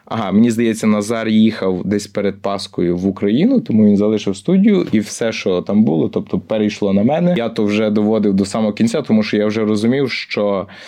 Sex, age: male, 20-39